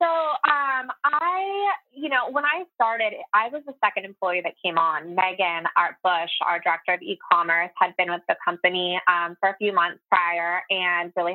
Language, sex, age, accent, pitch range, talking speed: English, female, 20-39, American, 190-260 Hz, 190 wpm